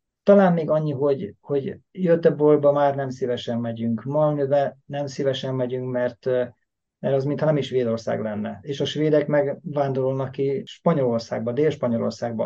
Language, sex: Hungarian, male